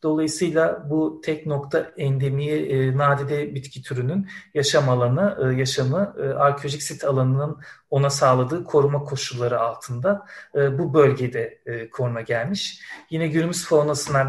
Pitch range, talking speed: 135-165 Hz, 125 wpm